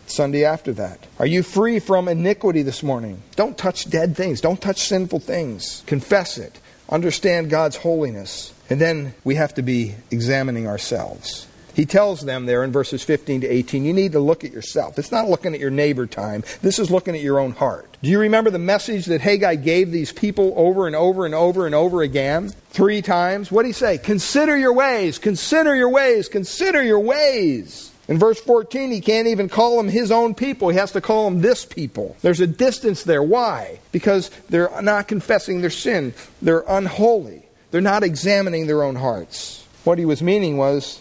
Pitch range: 150-205 Hz